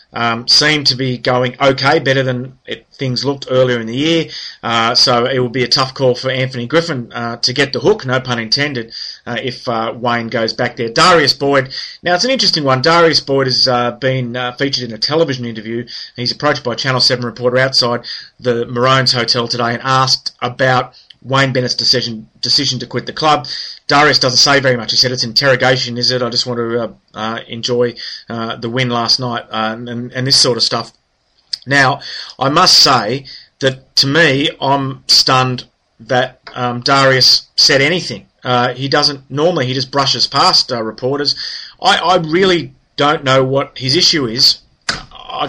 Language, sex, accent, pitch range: English, male, Australian, 120-140 Hz